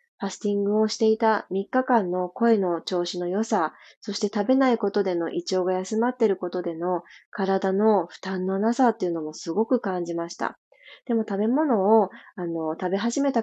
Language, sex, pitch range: Japanese, female, 180-230 Hz